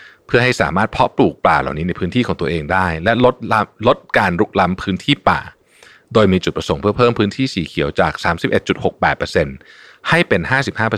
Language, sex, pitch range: Thai, male, 95-125 Hz